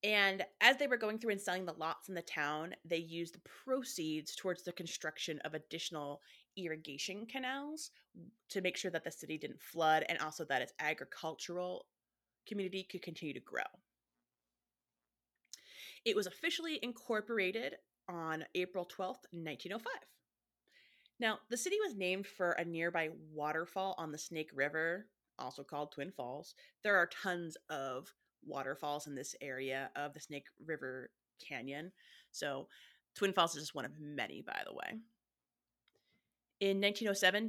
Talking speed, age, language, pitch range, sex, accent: 145 wpm, 30-49, English, 155-205 Hz, female, American